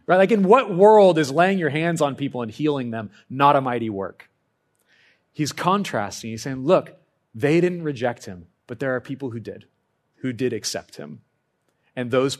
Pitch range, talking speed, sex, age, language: 100-130 Hz, 185 wpm, male, 30-49, English